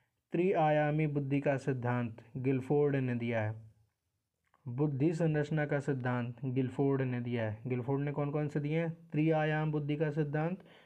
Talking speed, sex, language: 150 wpm, male, Hindi